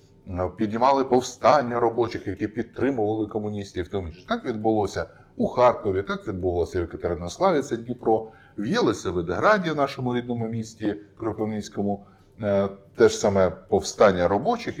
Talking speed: 120 wpm